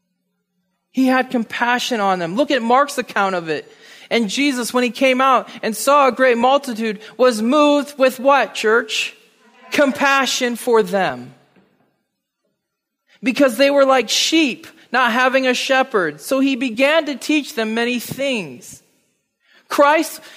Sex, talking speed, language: male, 140 wpm, English